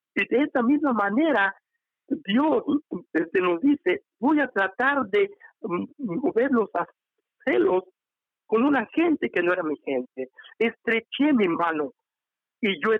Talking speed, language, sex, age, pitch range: 140 wpm, English, male, 60-79, 170-250 Hz